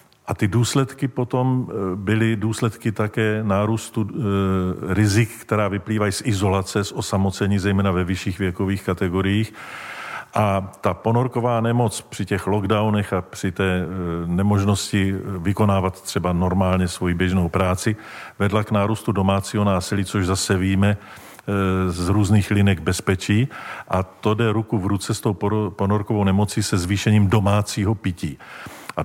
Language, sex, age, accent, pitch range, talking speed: Czech, male, 50-69, native, 95-110 Hz, 130 wpm